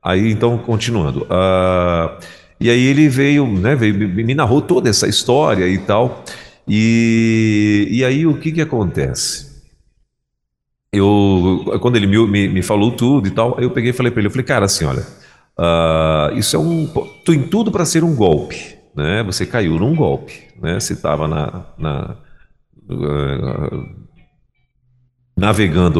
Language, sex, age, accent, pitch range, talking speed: Portuguese, male, 40-59, Brazilian, 90-120 Hz, 155 wpm